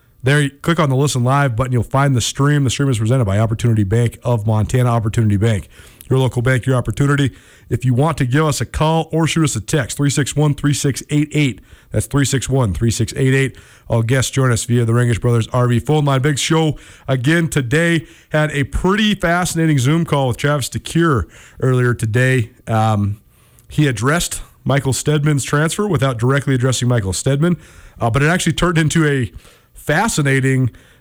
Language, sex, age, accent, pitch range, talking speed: English, male, 40-59, American, 120-155 Hz, 170 wpm